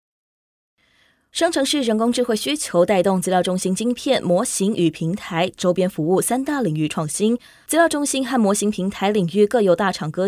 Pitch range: 175-245 Hz